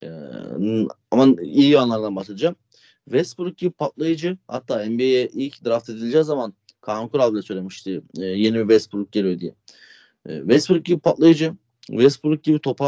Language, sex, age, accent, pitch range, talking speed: Turkish, male, 40-59, native, 110-145 Hz, 145 wpm